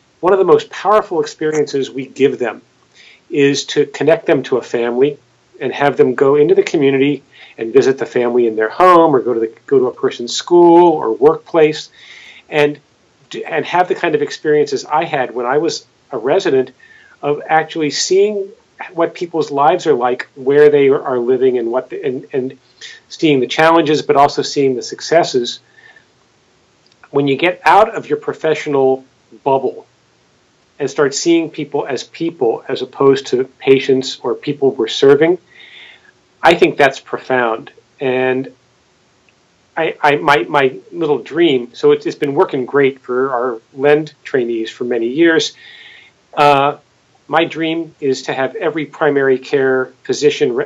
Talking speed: 160 wpm